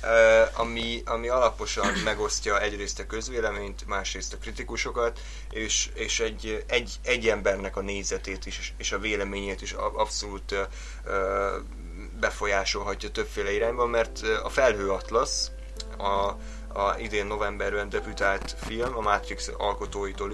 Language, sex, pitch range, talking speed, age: Hungarian, male, 100-115 Hz, 120 wpm, 20-39